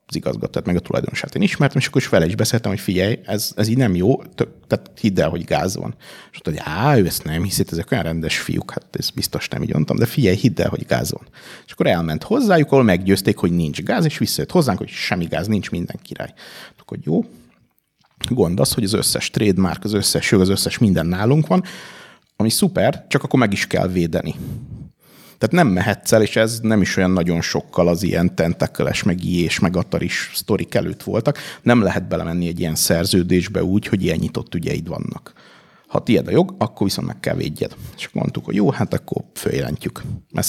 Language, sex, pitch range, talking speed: Hungarian, male, 85-115 Hz, 210 wpm